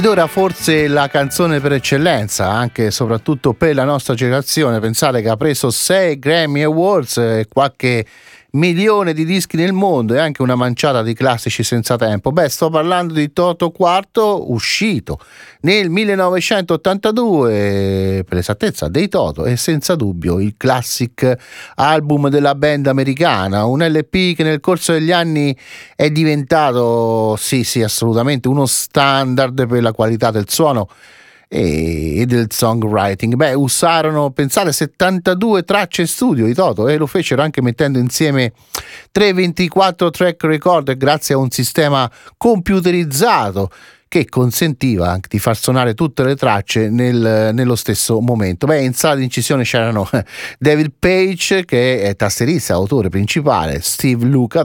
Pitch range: 120-165 Hz